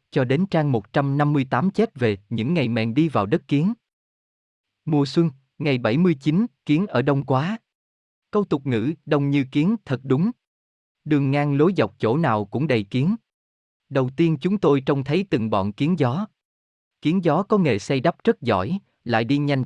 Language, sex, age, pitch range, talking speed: Vietnamese, male, 20-39, 115-165 Hz, 180 wpm